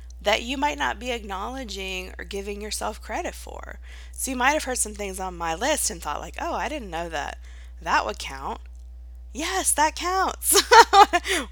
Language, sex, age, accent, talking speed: English, female, 20-39, American, 180 wpm